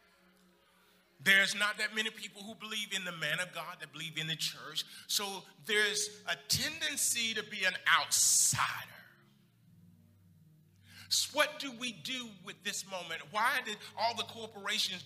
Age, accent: 40-59, American